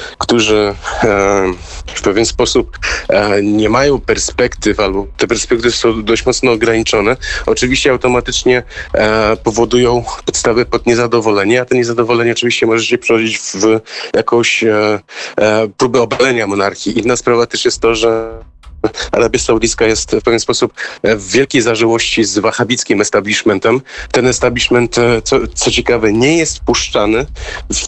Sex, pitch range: male, 110-125 Hz